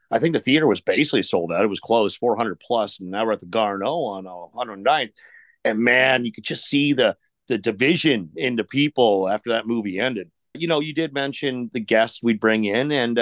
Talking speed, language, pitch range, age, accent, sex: 215 wpm, English, 110-135 Hz, 40-59, American, male